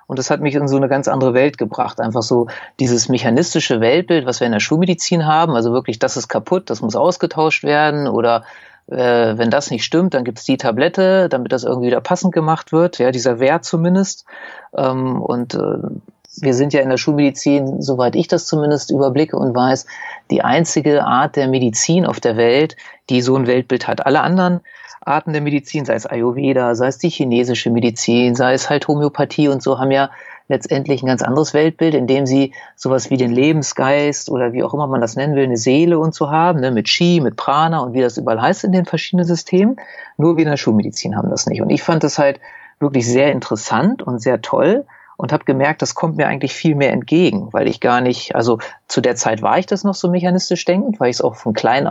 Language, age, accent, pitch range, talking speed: German, 40-59, German, 130-165 Hz, 220 wpm